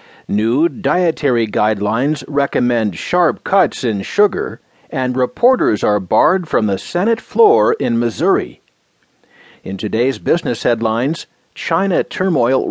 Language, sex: English, male